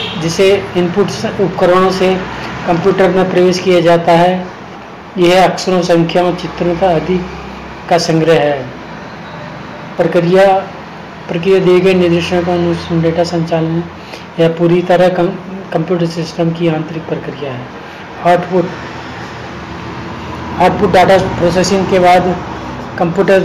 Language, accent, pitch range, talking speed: Hindi, native, 170-185 Hz, 115 wpm